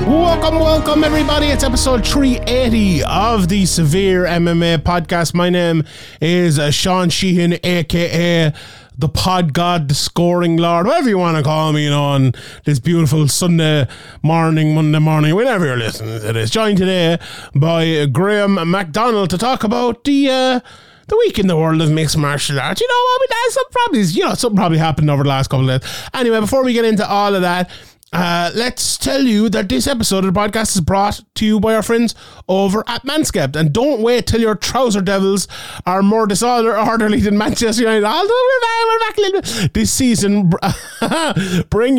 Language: English